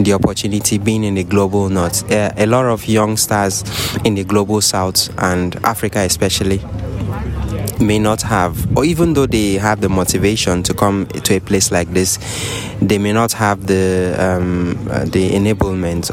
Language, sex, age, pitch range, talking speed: English, male, 20-39, 100-120 Hz, 160 wpm